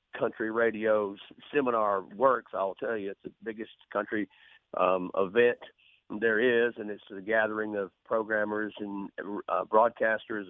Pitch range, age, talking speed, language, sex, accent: 105-125 Hz, 50-69, 135 wpm, English, male, American